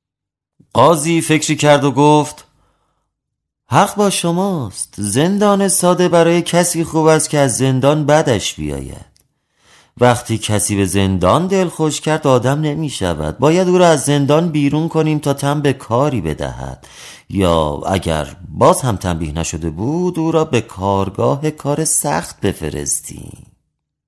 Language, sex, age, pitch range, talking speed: English, male, 30-49, 100-160 Hz, 135 wpm